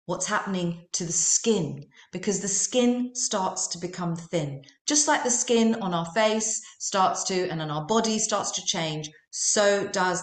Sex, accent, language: female, British, English